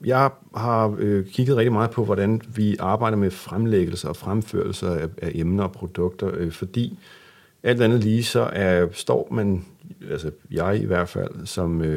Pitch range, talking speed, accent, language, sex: 85-105 Hz, 155 wpm, Danish, English, male